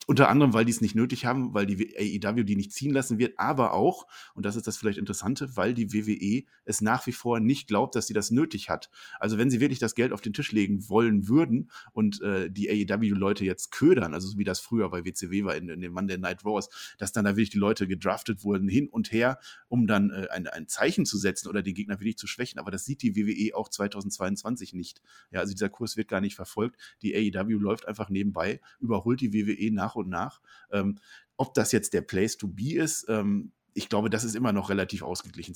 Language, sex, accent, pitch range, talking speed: German, male, German, 95-115 Hz, 235 wpm